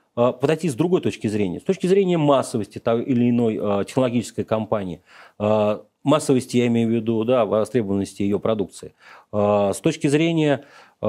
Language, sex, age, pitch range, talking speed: Russian, male, 40-59, 110-155 Hz, 140 wpm